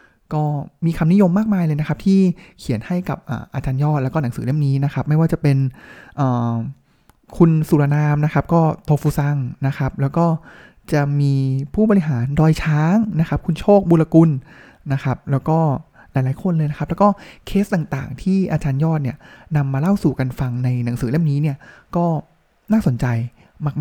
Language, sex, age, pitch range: Thai, male, 20-39, 140-185 Hz